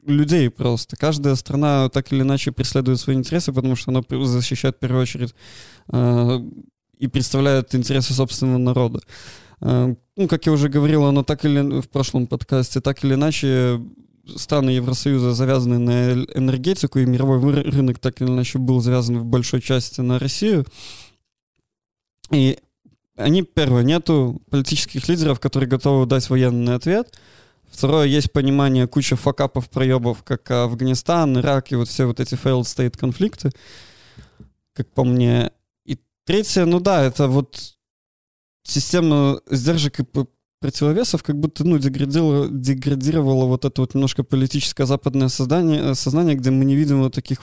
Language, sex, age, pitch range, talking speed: Russian, male, 20-39, 125-140 Hz, 145 wpm